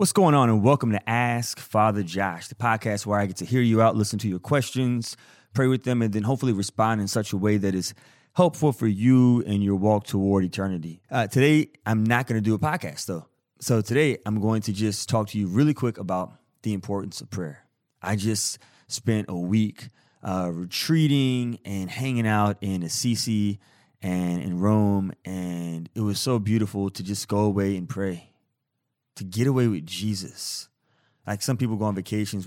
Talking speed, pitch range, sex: 195 wpm, 95-115 Hz, male